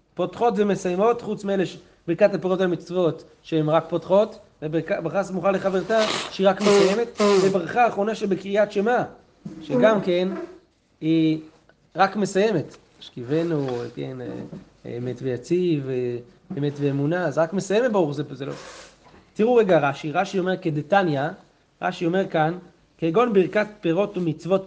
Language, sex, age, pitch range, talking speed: Hebrew, male, 30-49, 155-200 Hz, 135 wpm